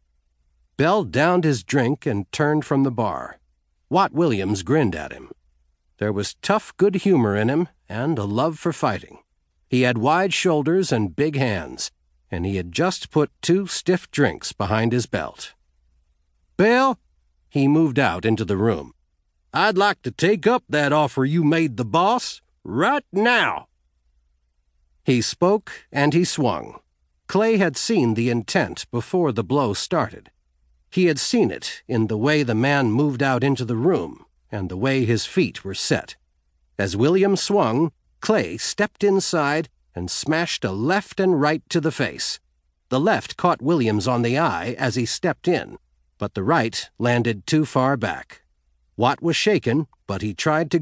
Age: 50-69